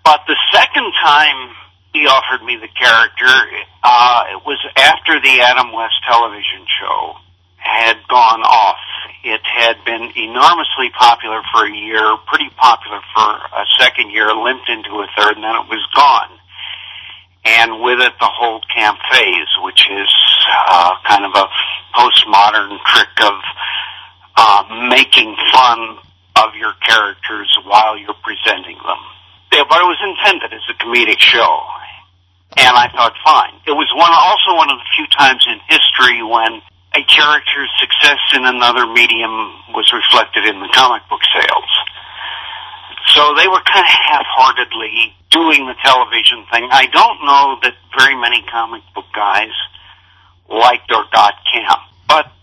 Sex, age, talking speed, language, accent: male, 50-69, 150 wpm, English, American